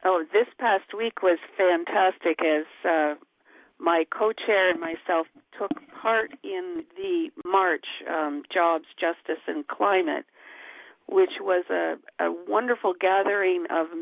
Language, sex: English, female